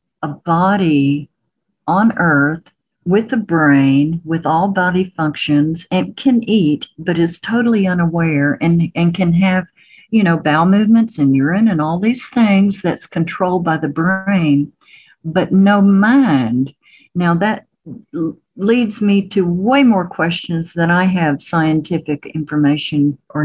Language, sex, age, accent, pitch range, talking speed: English, female, 50-69, American, 155-195 Hz, 140 wpm